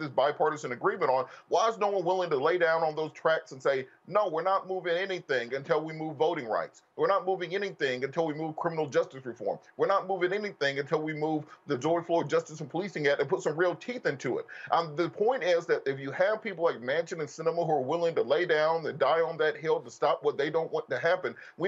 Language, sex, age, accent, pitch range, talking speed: English, male, 30-49, American, 155-185 Hz, 250 wpm